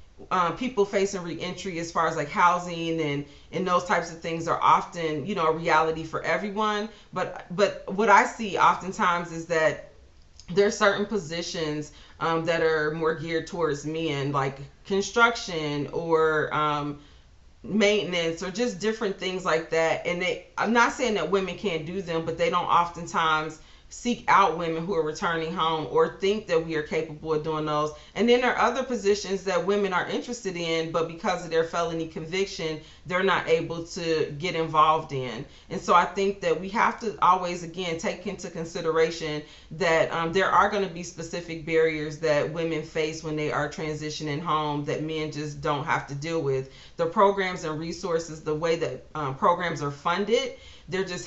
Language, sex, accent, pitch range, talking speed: English, female, American, 155-190 Hz, 185 wpm